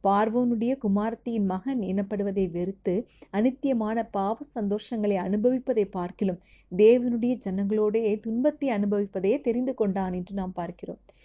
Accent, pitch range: native, 190-230 Hz